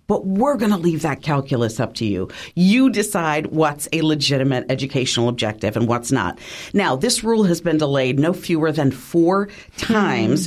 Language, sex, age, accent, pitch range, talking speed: English, female, 40-59, American, 135-180 Hz, 180 wpm